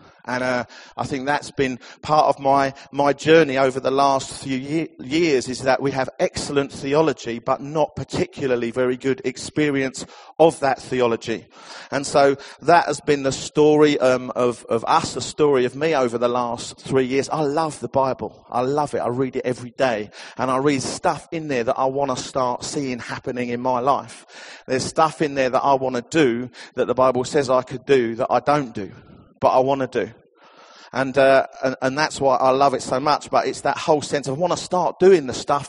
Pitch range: 130-160 Hz